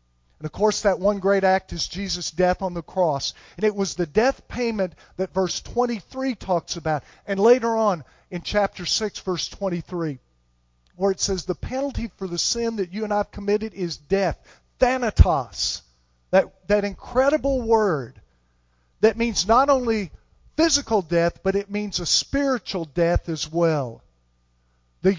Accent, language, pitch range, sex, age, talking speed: American, English, 135-230 Hz, male, 50-69, 160 wpm